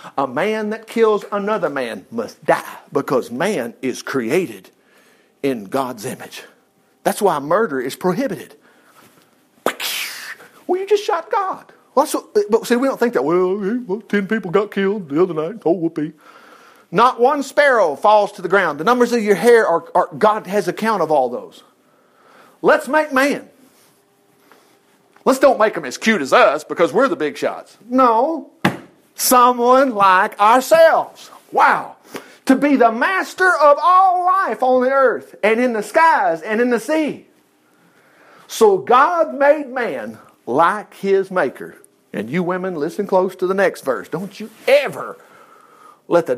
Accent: American